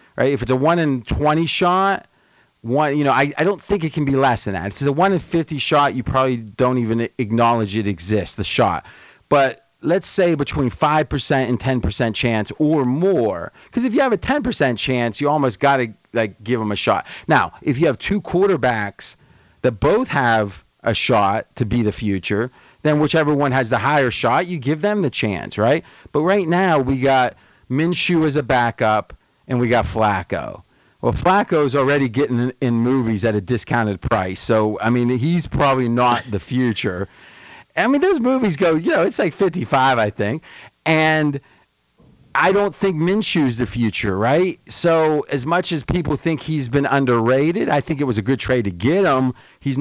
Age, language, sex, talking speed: 40-59, English, male, 190 wpm